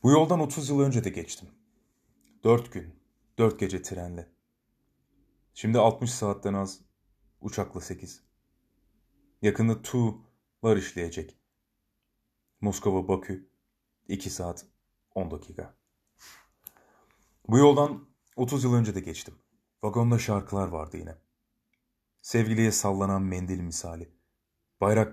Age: 30-49